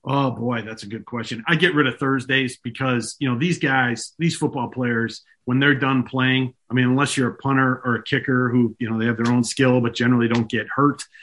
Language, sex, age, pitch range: English, male, 40-59, 125-140 Hz